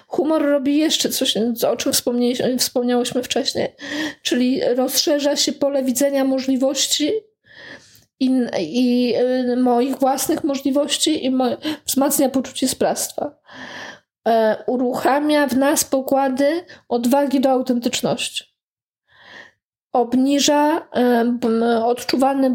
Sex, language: female, Polish